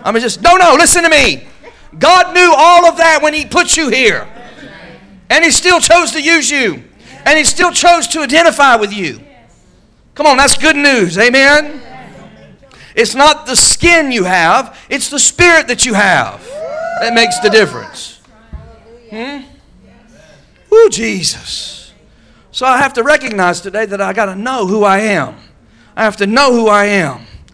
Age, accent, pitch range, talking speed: 50-69, American, 190-280 Hz, 175 wpm